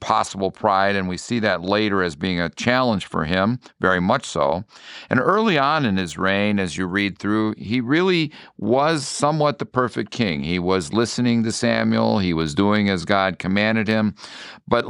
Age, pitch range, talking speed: 50-69, 95-115 Hz, 185 wpm